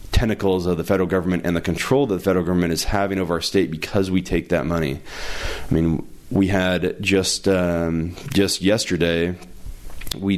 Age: 30-49